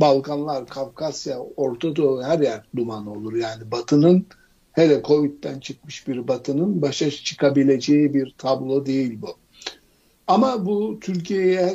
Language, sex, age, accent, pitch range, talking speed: Turkish, male, 60-79, native, 130-165 Hz, 115 wpm